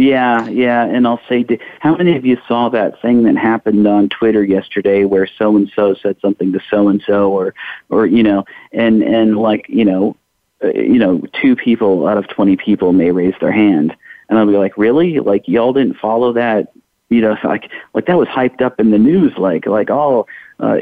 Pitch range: 100-115 Hz